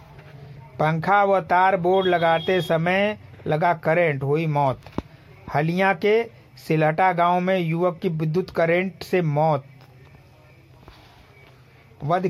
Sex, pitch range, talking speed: male, 140-180 Hz, 105 wpm